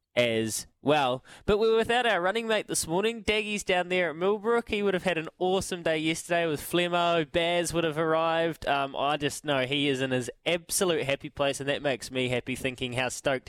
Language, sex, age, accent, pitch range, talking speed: English, male, 10-29, Australian, 125-170 Hz, 220 wpm